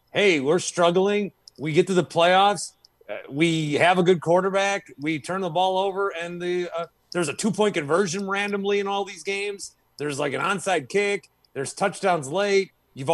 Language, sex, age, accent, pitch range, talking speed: English, male, 30-49, American, 150-200 Hz, 185 wpm